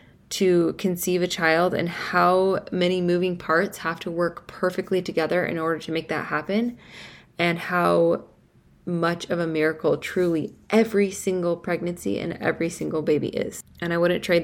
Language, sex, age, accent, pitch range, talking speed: English, female, 20-39, American, 165-185 Hz, 160 wpm